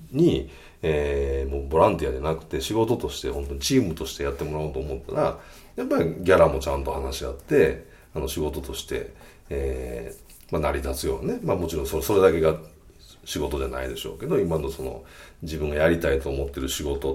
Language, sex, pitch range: Japanese, male, 65-80 Hz